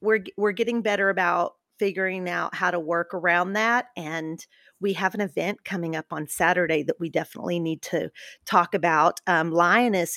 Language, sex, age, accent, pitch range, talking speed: English, female, 40-59, American, 180-220 Hz, 175 wpm